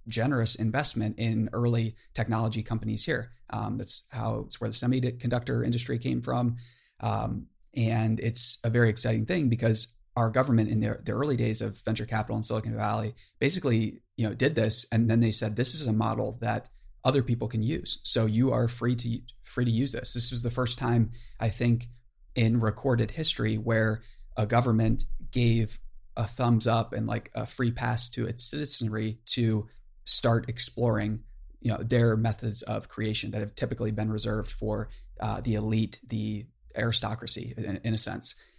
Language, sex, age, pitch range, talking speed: English, male, 30-49, 110-120 Hz, 175 wpm